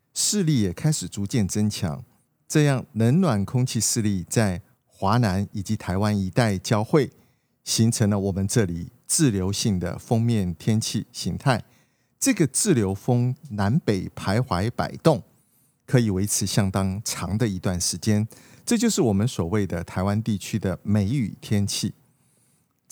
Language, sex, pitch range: Chinese, male, 100-130 Hz